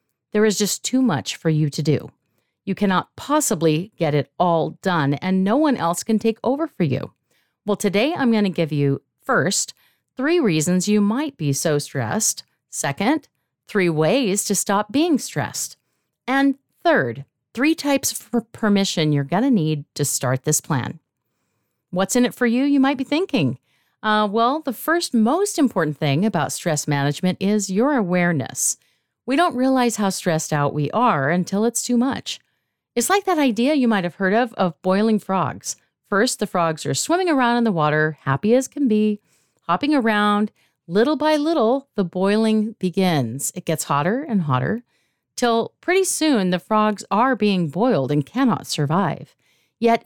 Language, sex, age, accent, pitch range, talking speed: English, female, 40-59, American, 160-260 Hz, 175 wpm